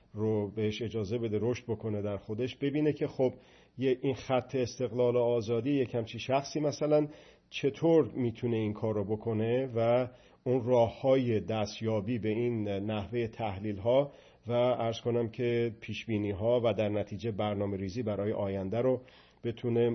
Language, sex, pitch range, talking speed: Persian, male, 105-125 Hz, 155 wpm